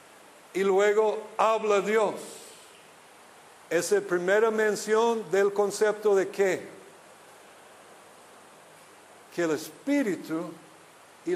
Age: 50-69